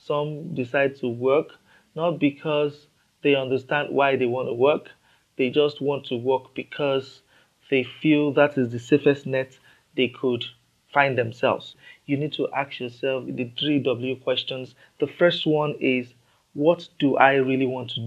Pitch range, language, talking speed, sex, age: 125-150 Hz, English, 165 wpm, male, 30-49